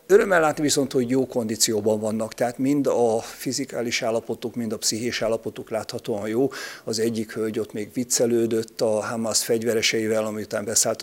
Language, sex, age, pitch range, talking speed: Hungarian, male, 50-69, 110-125 Hz, 160 wpm